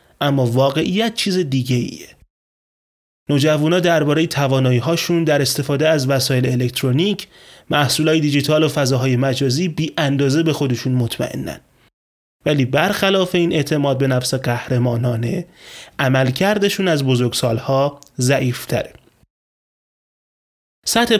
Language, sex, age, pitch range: Persian, male, 30-49, 130-165 Hz